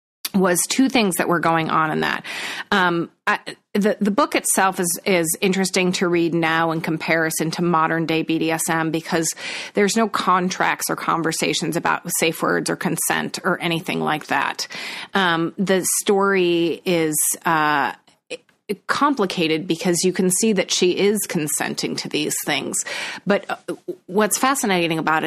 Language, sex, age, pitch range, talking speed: English, female, 30-49, 160-185 Hz, 145 wpm